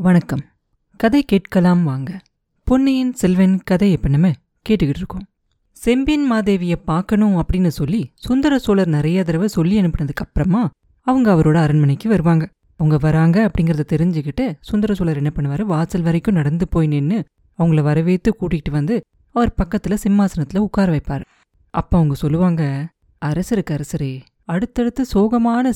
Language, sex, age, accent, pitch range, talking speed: Tamil, female, 20-39, native, 160-205 Hz, 120 wpm